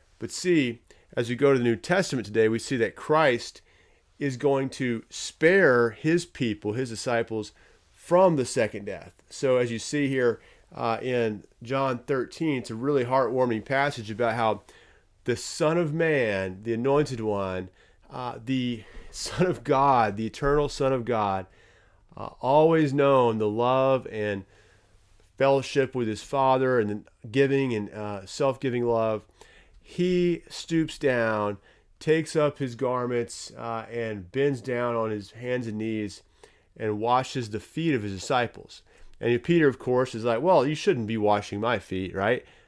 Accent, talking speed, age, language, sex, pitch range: American, 155 wpm, 30-49, English, male, 110-135 Hz